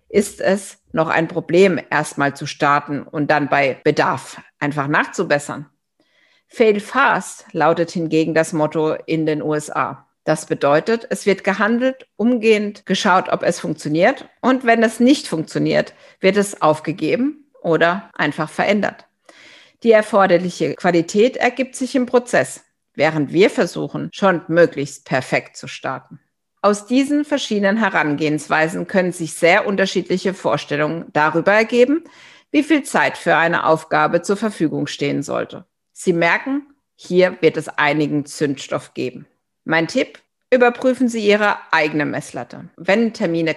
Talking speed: 135 wpm